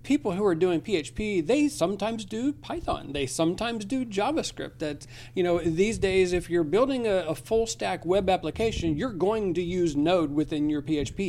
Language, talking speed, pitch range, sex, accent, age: English, 185 wpm, 145-185 Hz, male, American, 40-59